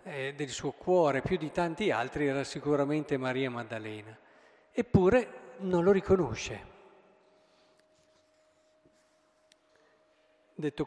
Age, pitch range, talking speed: 50-69, 135-190 Hz, 90 wpm